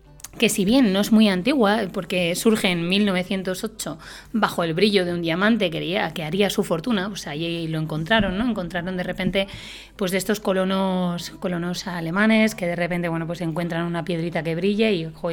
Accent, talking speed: Spanish, 185 wpm